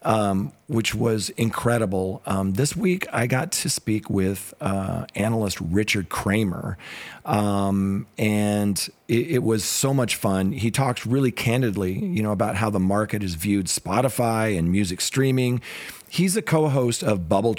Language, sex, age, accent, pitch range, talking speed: English, male, 40-59, American, 100-125 Hz, 155 wpm